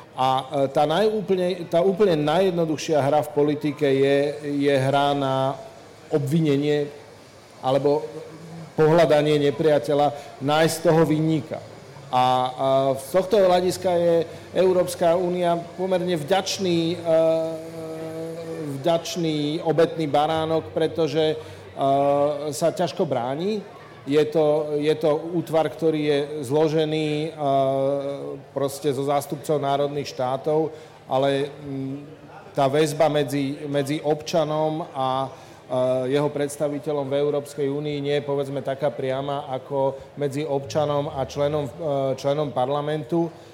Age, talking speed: 40-59, 100 wpm